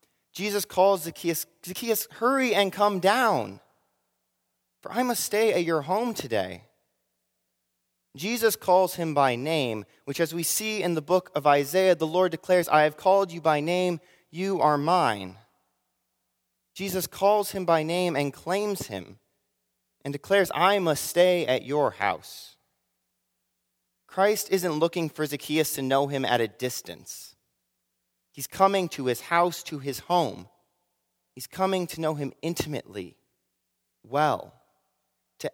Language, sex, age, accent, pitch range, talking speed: English, male, 30-49, American, 115-175 Hz, 145 wpm